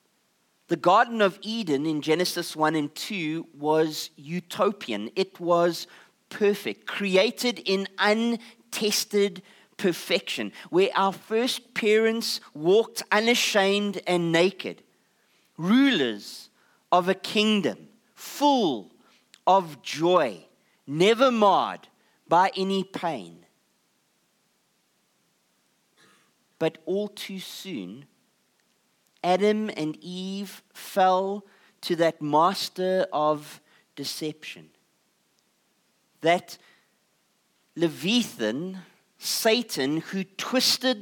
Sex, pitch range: male, 175-220 Hz